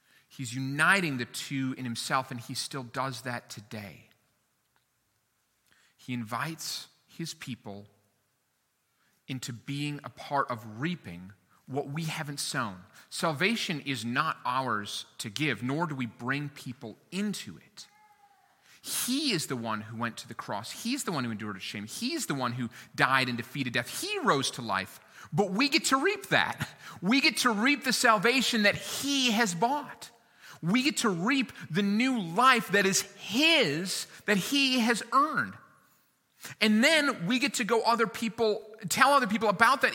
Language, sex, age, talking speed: English, male, 30-49, 165 wpm